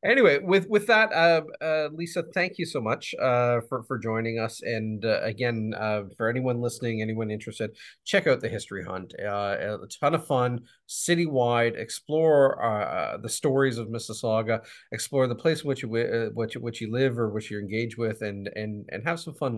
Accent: American